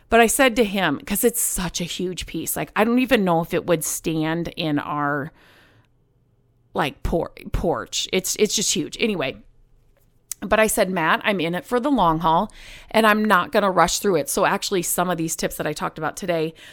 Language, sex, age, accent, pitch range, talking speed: English, female, 30-49, American, 160-215 Hz, 215 wpm